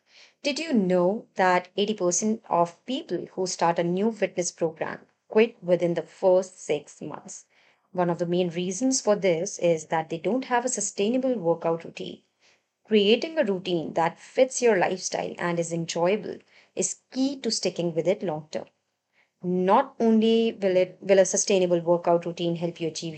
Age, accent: 30-49, Indian